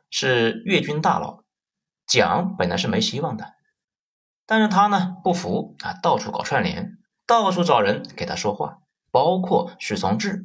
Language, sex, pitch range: Chinese, male, 170-215 Hz